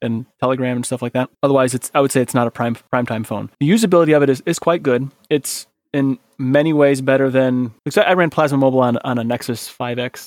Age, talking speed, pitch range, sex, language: 20-39, 240 wpm, 120-140 Hz, male, English